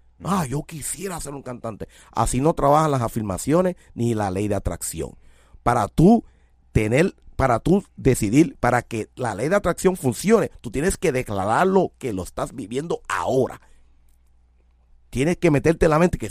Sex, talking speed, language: male, 170 wpm, Spanish